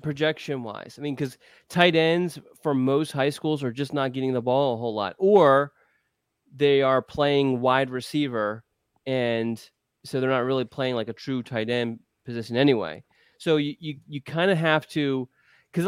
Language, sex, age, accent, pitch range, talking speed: English, male, 20-39, American, 125-150 Hz, 180 wpm